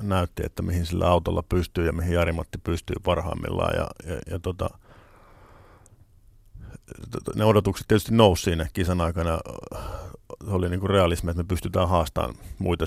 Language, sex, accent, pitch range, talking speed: Finnish, male, native, 85-95 Hz, 145 wpm